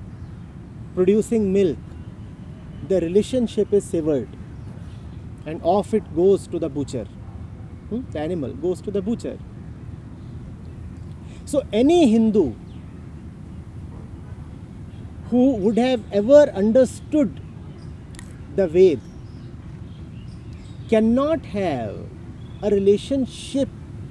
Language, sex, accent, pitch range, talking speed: English, male, Indian, 130-220 Hz, 85 wpm